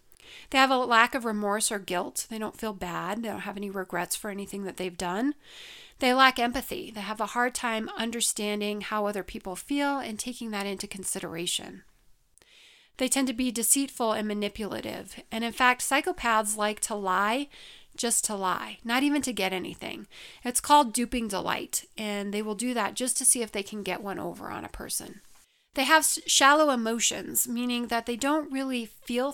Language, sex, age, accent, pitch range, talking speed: English, female, 40-59, American, 205-255 Hz, 190 wpm